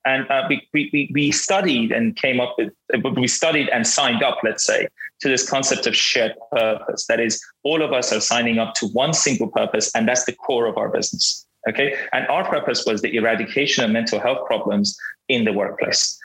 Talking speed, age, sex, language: 205 wpm, 30-49, male, English